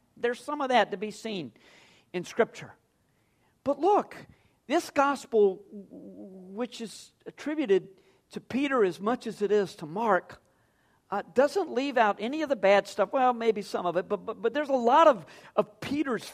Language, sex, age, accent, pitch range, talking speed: English, male, 50-69, American, 185-265 Hz, 175 wpm